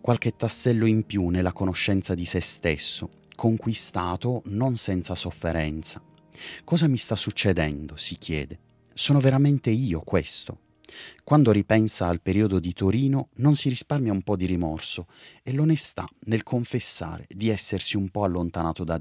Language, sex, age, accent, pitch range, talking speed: Italian, male, 30-49, native, 90-120 Hz, 145 wpm